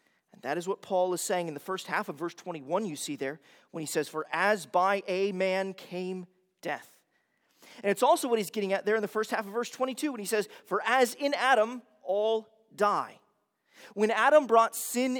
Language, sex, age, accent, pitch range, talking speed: English, male, 30-49, American, 175-230 Hz, 215 wpm